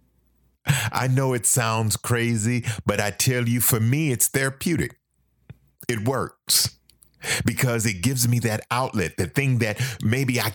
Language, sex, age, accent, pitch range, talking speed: English, male, 40-59, American, 110-150 Hz, 150 wpm